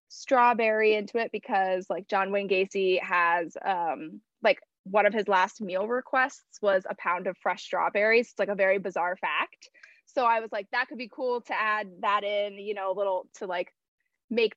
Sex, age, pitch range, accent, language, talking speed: female, 20-39, 190-245 Hz, American, English, 200 wpm